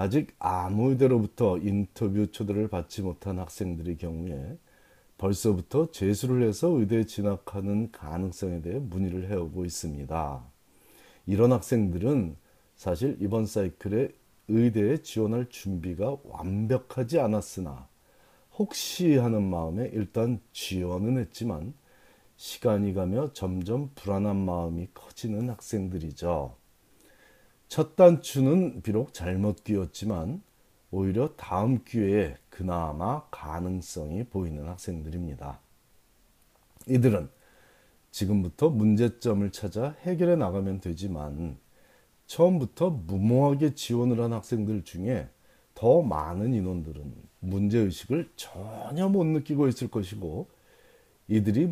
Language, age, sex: Korean, 40-59, male